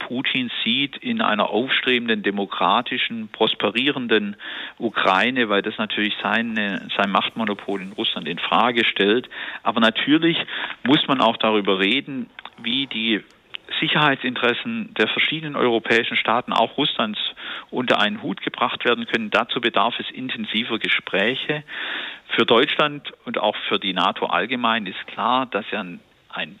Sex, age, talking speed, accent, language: male, 50-69, 135 wpm, German, German